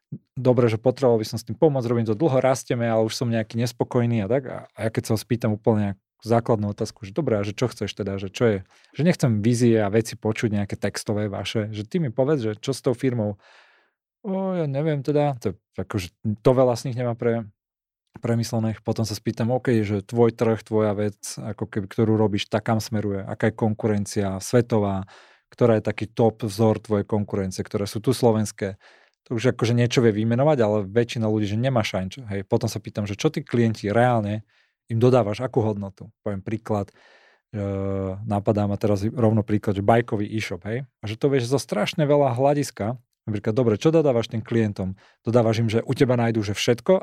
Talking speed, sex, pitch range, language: 200 wpm, male, 105-125 Hz, Slovak